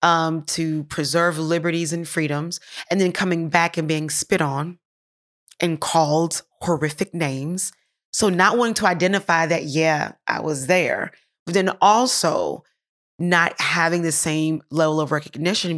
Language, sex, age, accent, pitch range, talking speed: English, female, 30-49, American, 150-175 Hz, 145 wpm